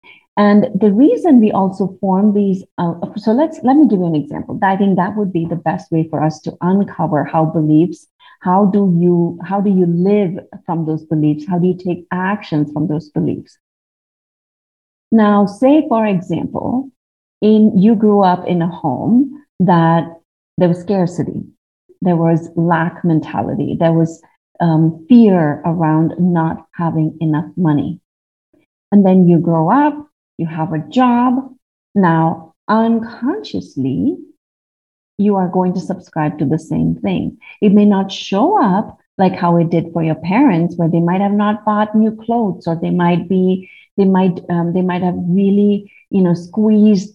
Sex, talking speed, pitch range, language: female, 165 wpm, 165-205 Hz, English